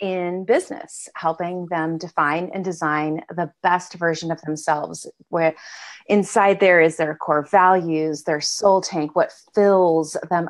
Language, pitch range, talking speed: English, 155-190 Hz, 145 wpm